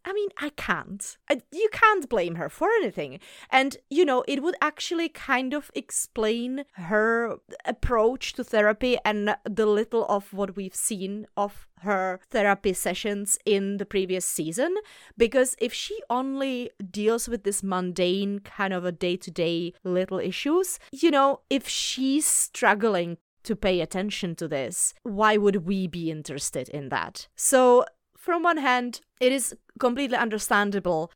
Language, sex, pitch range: English, female, 180-240 Hz